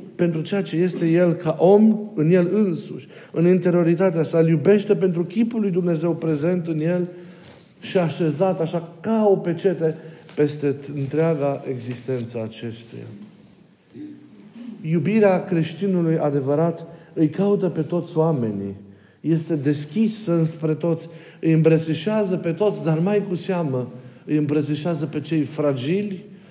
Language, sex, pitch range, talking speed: Romanian, male, 145-180 Hz, 130 wpm